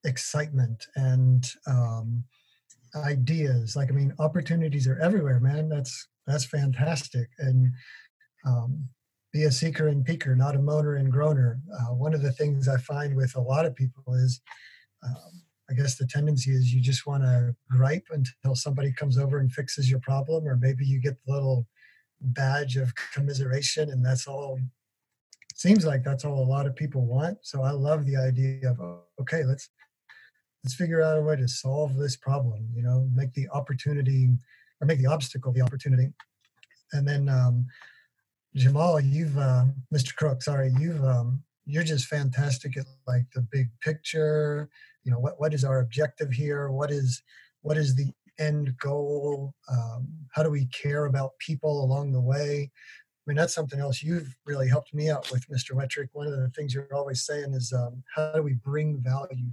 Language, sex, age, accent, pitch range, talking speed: English, male, 40-59, American, 130-145 Hz, 180 wpm